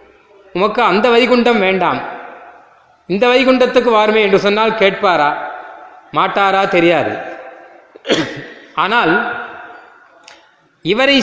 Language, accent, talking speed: Tamil, native, 75 wpm